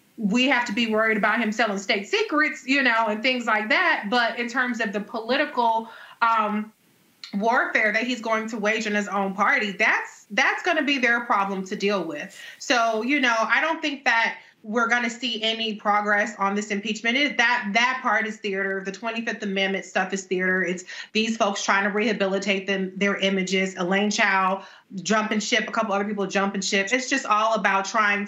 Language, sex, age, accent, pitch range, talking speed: English, female, 30-49, American, 200-245 Hz, 200 wpm